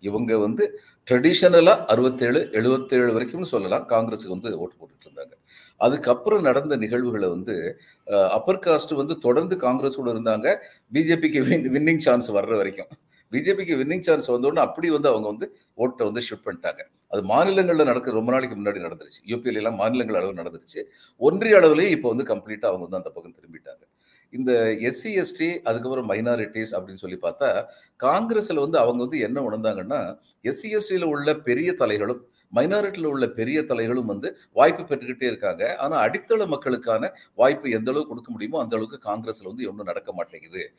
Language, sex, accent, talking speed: Tamil, male, native, 150 wpm